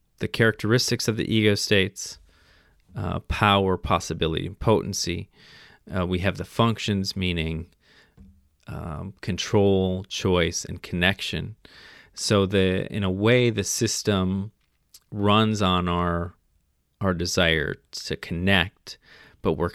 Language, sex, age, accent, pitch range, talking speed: English, male, 30-49, American, 90-100 Hz, 115 wpm